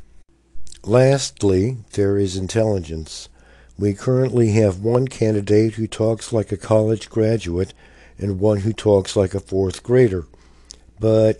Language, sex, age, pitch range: English, male, 60-79, 85-115 Hz